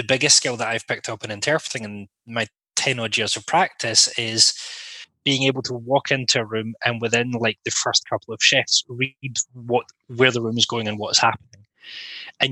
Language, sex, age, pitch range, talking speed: English, male, 20-39, 115-130 Hz, 205 wpm